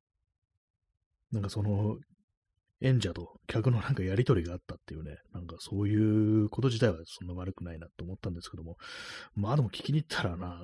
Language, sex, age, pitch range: Japanese, male, 30-49, 90-110 Hz